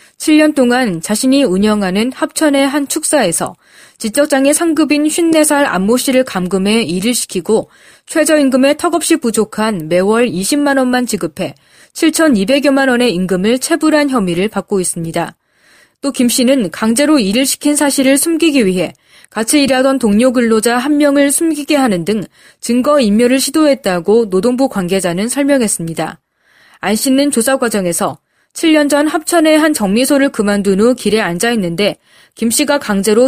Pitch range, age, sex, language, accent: 200-285 Hz, 20-39, female, Korean, native